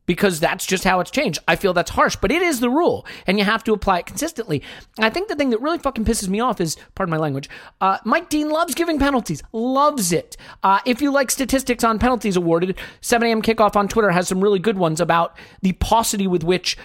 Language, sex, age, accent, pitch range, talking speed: English, male, 40-59, American, 180-245 Hz, 240 wpm